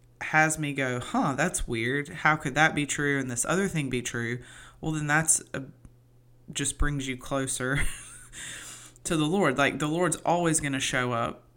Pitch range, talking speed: 125-145 Hz, 185 wpm